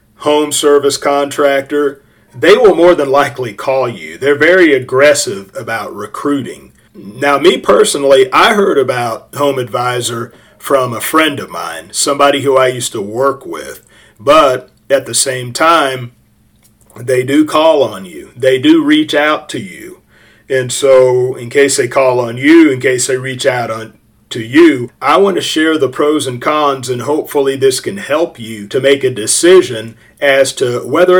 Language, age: English, 40-59